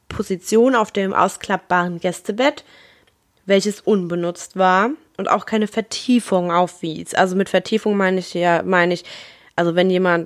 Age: 20-39